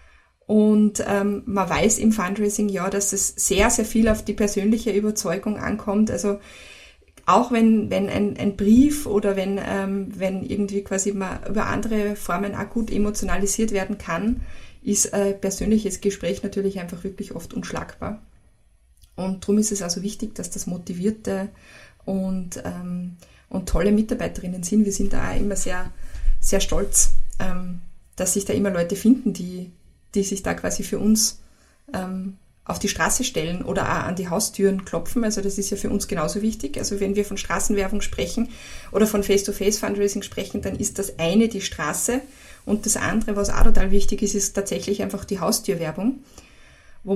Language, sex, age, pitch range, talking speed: German, female, 20-39, 195-215 Hz, 170 wpm